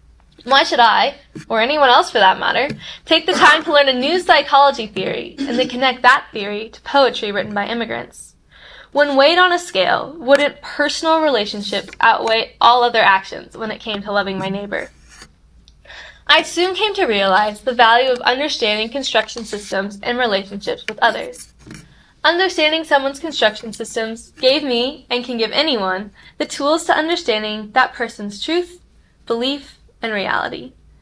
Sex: female